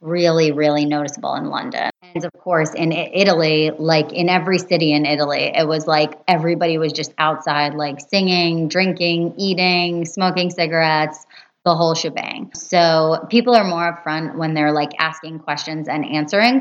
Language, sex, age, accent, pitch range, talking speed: English, female, 20-39, American, 150-175 Hz, 160 wpm